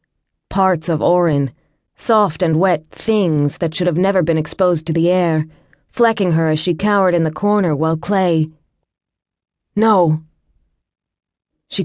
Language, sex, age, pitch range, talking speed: English, female, 20-39, 165-200 Hz, 140 wpm